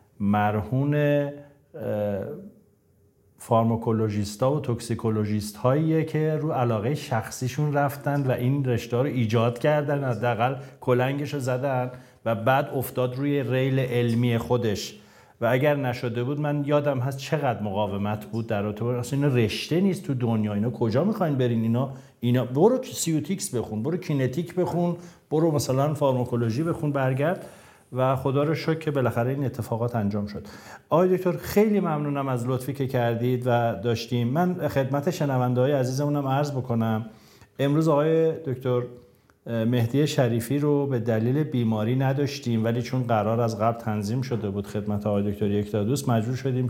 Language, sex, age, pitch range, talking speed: Persian, male, 50-69, 115-140 Hz, 150 wpm